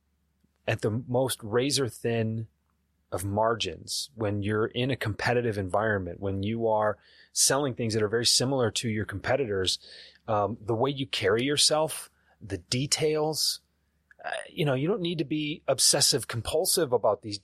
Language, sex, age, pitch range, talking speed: English, male, 30-49, 105-145 Hz, 155 wpm